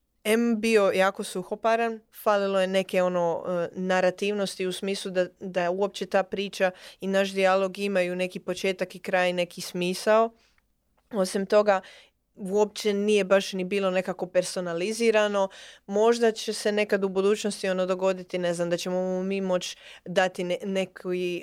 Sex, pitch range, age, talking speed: female, 180-205 Hz, 20-39, 150 wpm